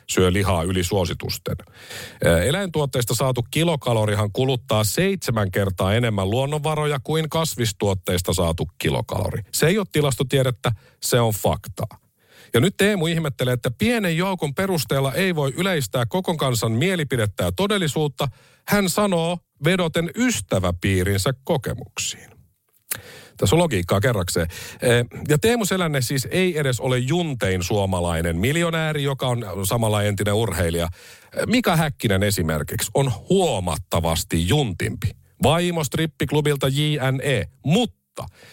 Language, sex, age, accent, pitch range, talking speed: Finnish, male, 50-69, native, 105-160 Hz, 115 wpm